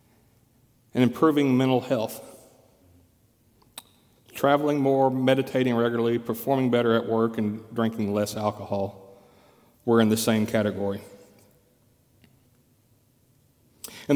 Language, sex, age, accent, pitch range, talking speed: English, male, 40-59, American, 110-140 Hz, 95 wpm